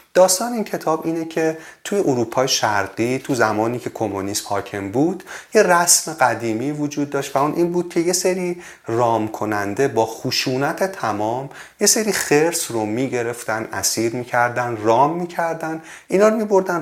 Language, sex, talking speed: Persian, male, 165 wpm